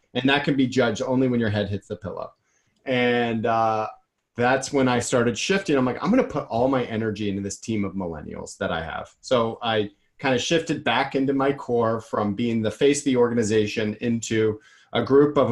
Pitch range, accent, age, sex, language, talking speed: 115-150 Hz, American, 30-49, male, English, 215 wpm